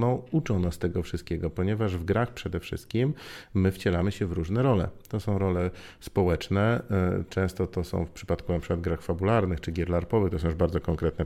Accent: native